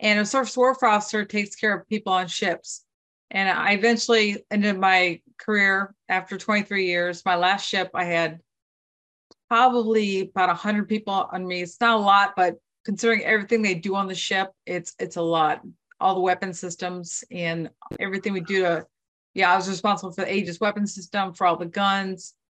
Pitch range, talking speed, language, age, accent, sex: 175-210 Hz, 190 wpm, English, 40-59, American, female